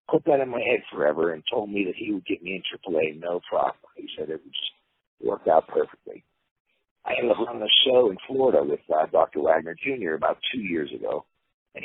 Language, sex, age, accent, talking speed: English, male, 50-69, American, 225 wpm